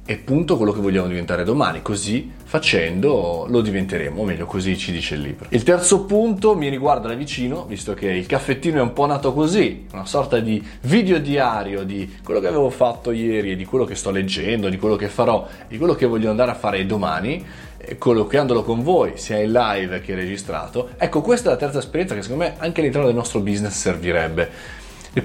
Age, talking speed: 20-39, 205 wpm